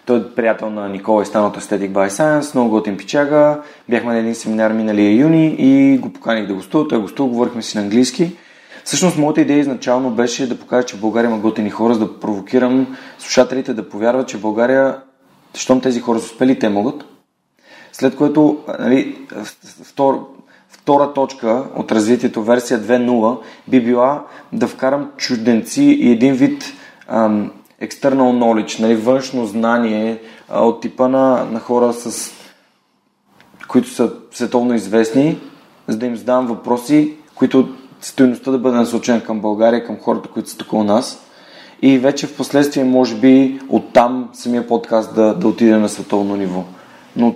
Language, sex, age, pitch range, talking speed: Bulgarian, male, 30-49, 110-135 Hz, 165 wpm